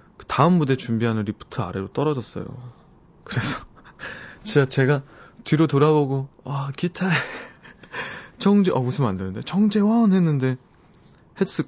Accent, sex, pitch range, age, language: native, male, 115-165 Hz, 20-39, Korean